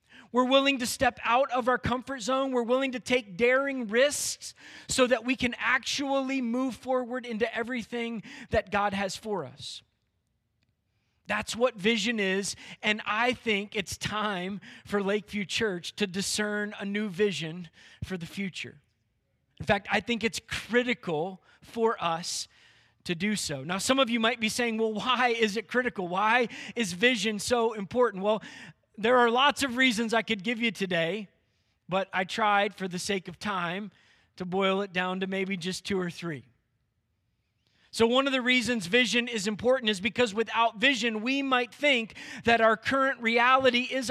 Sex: male